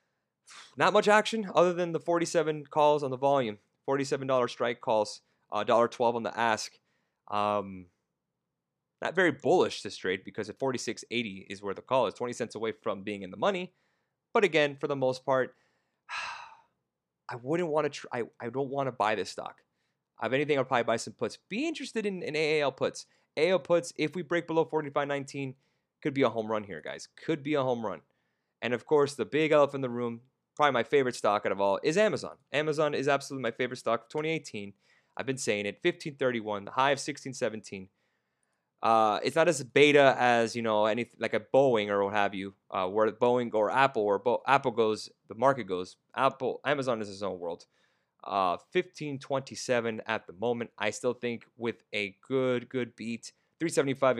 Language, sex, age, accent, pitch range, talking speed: English, male, 30-49, American, 110-150 Hz, 195 wpm